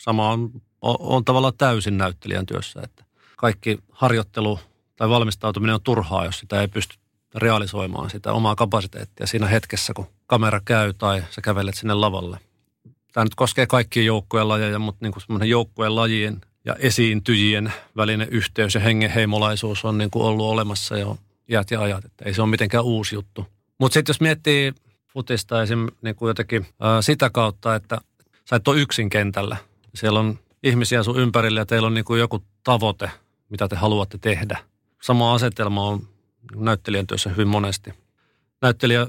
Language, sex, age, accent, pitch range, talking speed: Finnish, male, 40-59, native, 105-120 Hz, 160 wpm